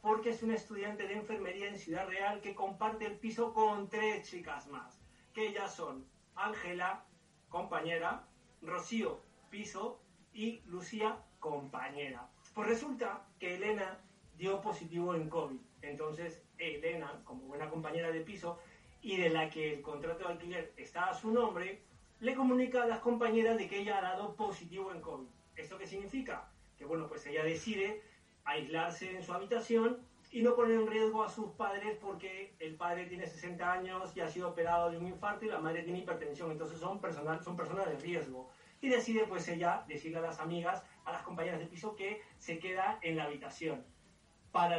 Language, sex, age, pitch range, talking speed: Spanish, male, 30-49, 165-215 Hz, 175 wpm